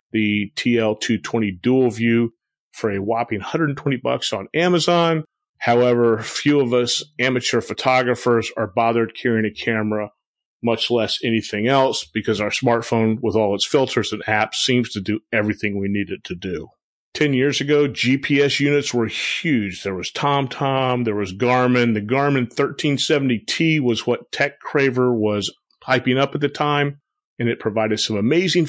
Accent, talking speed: American, 155 wpm